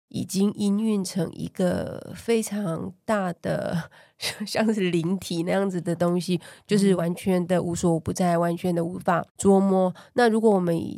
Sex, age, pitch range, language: female, 20-39, 175-195 Hz, Chinese